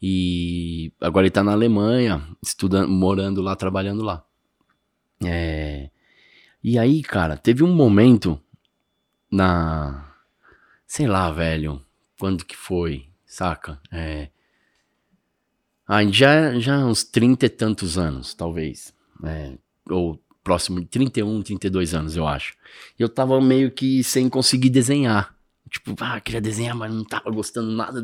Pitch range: 90-115 Hz